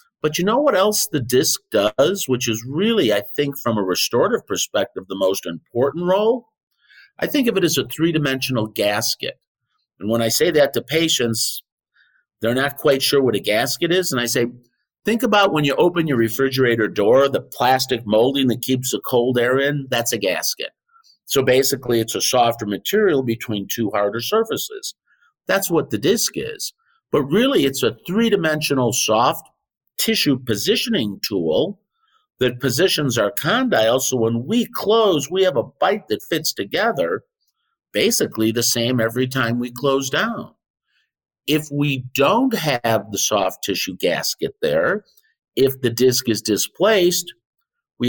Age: 50-69